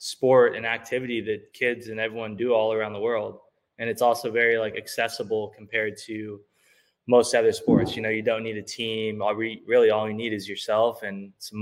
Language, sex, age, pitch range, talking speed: English, male, 20-39, 110-120 Hz, 195 wpm